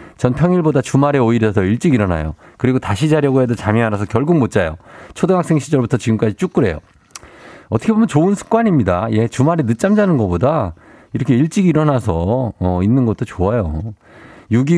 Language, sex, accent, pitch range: Korean, male, native, 100-145 Hz